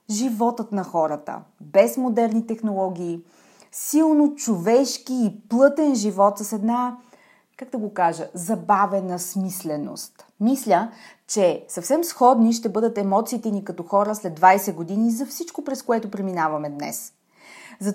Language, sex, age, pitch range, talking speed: Bulgarian, female, 30-49, 200-265 Hz, 130 wpm